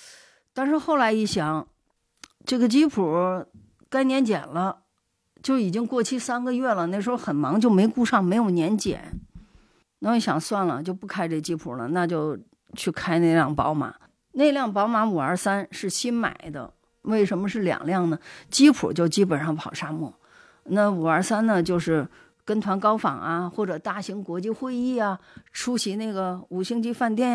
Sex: female